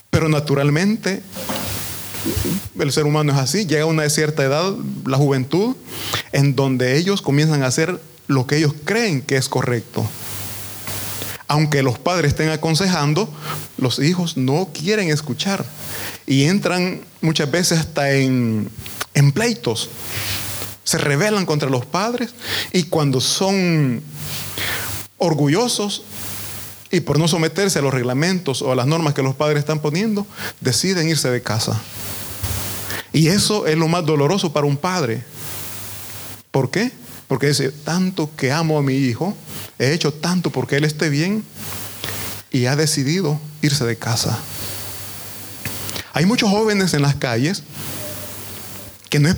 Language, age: Italian, 30-49